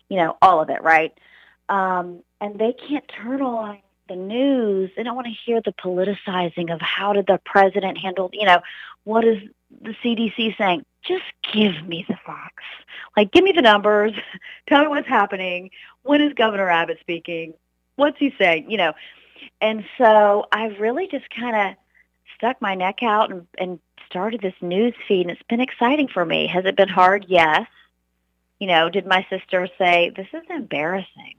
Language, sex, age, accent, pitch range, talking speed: English, female, 40-59, American, 170-225 Hz, 185 wpm